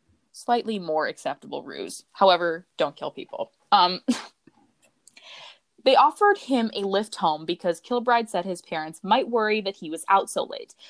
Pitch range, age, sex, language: 160-220 Hz, 20-39, female, English